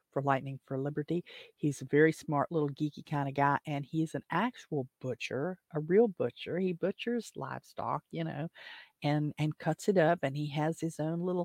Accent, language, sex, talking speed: American, English, female, 195 wpm